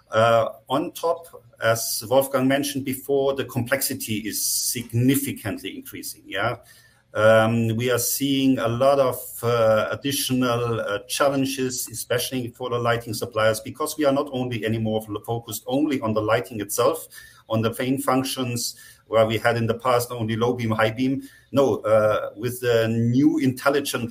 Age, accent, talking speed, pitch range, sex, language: 50-69, German, 155 wpm, 115-135 Hz, male, English